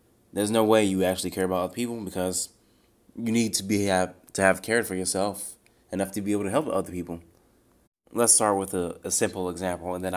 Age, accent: 20-39, American